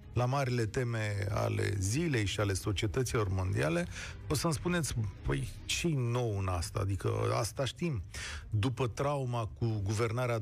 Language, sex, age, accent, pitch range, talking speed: Romanian, male, 40-59, native, 105-140 Hz, 140 wpm